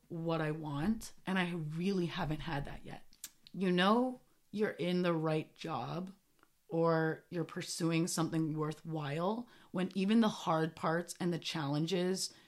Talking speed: 145 wpm